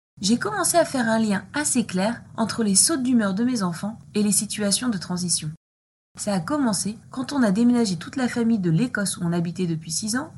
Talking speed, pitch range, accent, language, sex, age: 220 wpm, 170-235 Hz, French, French, female, 20-39